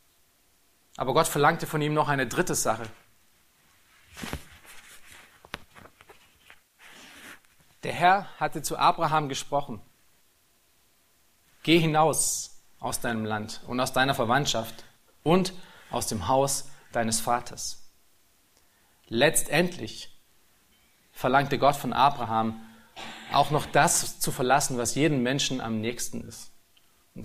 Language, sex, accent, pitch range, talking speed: German, male, German, 115-165 Hz, 105 wpm